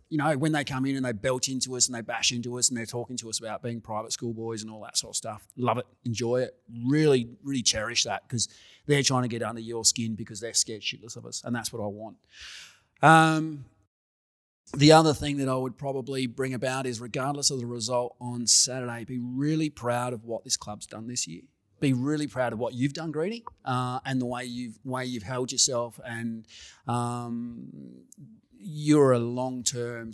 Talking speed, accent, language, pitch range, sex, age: 215 wpm, Australian, English, 115-135 Hz, male, 30-49